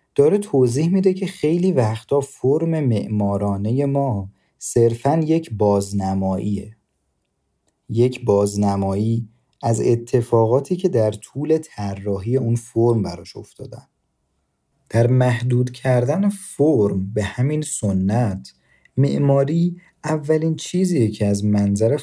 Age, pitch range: 40-59, 105-135 Hz